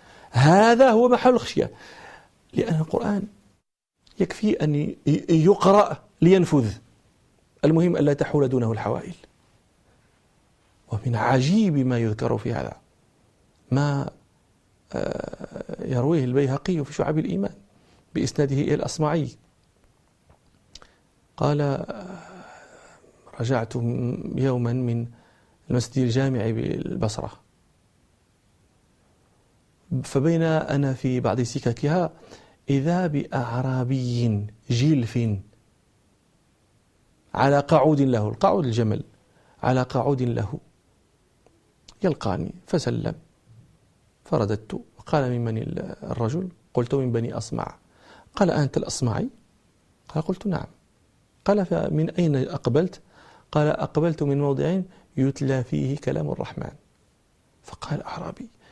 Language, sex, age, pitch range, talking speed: Arabic, male, 40-59, 120-160 Hz, 85 wpm